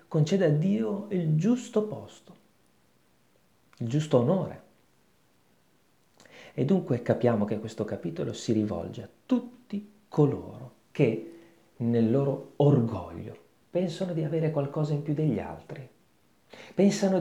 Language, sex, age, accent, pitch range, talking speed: Italian, male, 40-59, native, 120-200 Hz, 115 wpm